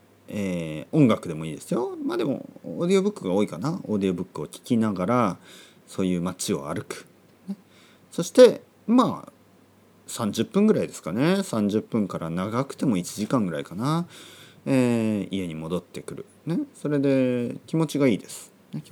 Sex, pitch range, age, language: male, 95-160 Hz, 30-49, Japanese